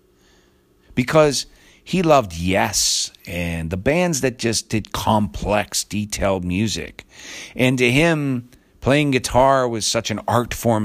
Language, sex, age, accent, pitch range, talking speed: English, male, 50-69, American, 95-130 Hz, 125 wpm